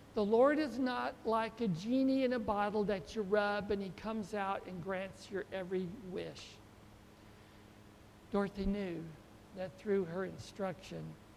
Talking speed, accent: 150 wpm, American